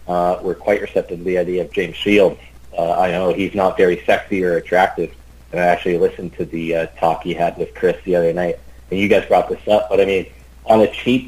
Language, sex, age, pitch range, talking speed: English, male, 40-59, 85-120 Hz, 240 wpm